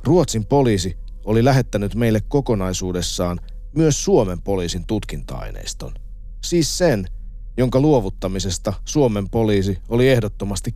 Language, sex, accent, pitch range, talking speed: Finnish, male, native, 85-115 Hz, 100 wpm